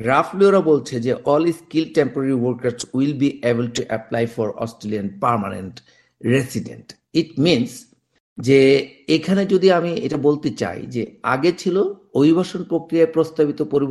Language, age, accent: Bengali, 50-69, native